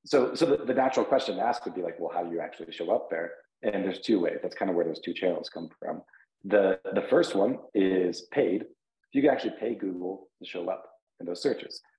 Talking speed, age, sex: 245 wpm, 30-49, male